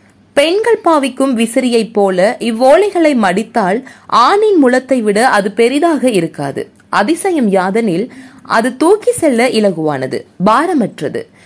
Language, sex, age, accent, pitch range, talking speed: Tamil, female, 20-39, native, 220-300 Hz, 100 wpm